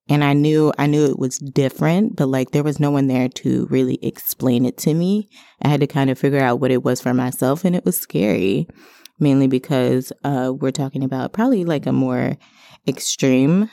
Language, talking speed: English, 210 wpm